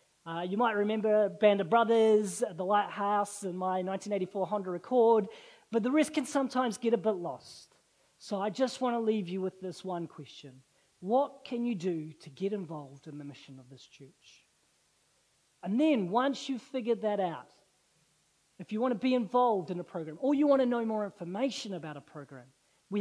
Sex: female